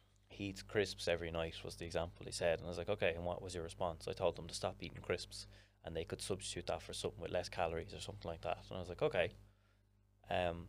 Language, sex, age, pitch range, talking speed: English, male, 20-39, 90-100 Hz, 260 wpm